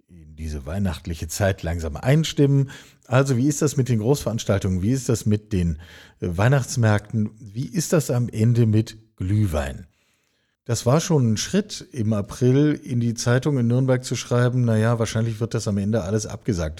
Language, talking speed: German, 170 wpm